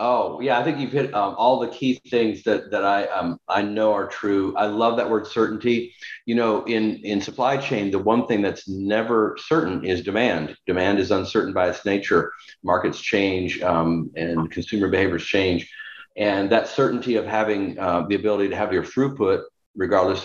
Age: 40-59